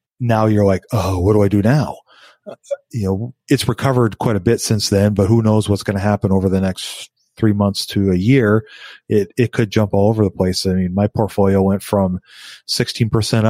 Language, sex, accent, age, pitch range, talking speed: English, male, American, 30-49, 100-115 Hz, 215 wpm